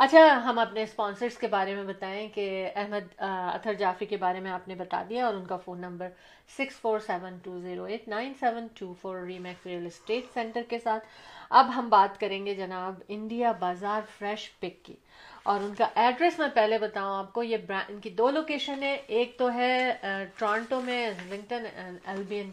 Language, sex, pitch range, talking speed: Urdu, female, 195-240 Hz, 180 wpm